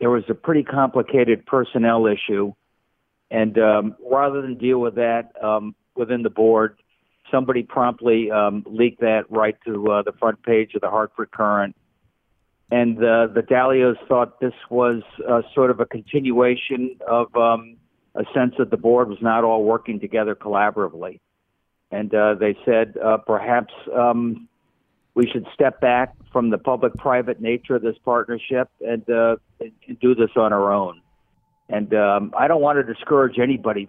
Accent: American